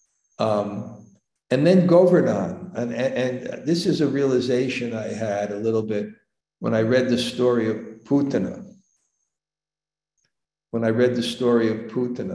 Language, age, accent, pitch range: English, 60-79, American, 115-140 Hz